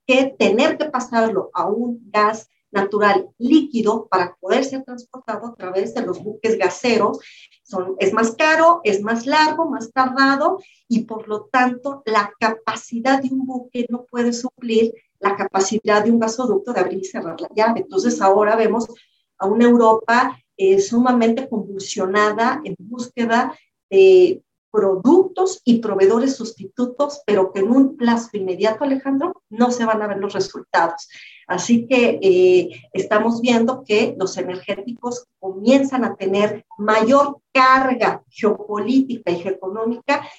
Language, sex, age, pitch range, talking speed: Spanish, female, 40-59, 210-260 Hz, 145 wpm